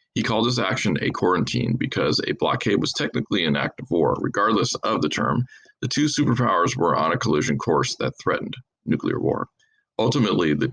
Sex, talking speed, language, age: male, 185 wpm, English, 40-59